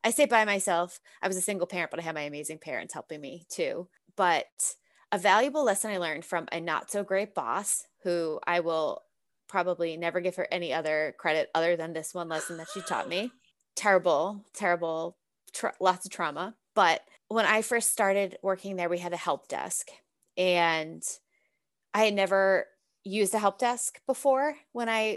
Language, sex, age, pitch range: English, female, 20-39, 170-210 Hz